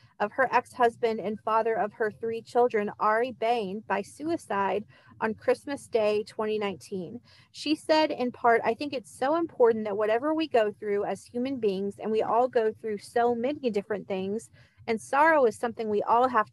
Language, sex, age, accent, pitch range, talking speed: English, female, 30-49, American, 205-245 Hz, 180 wpm